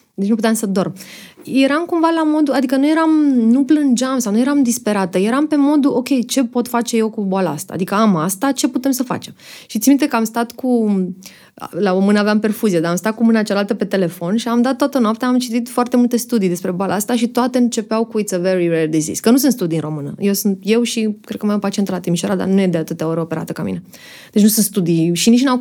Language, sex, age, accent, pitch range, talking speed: Romanian, female, 20-39, native, 190-245 Hz, 260 wpm